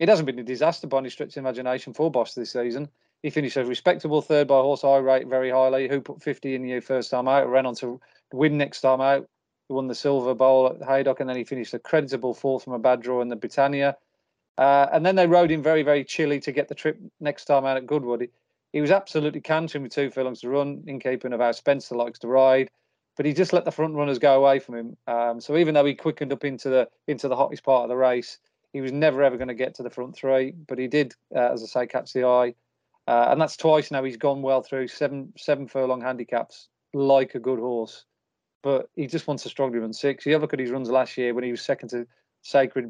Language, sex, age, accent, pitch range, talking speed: English, male, 40-59, British, 125-145 Hz, 260 wpm